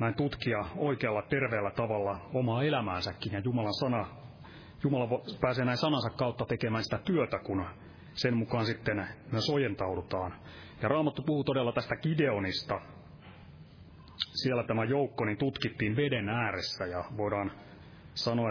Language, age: Finnish, 30-49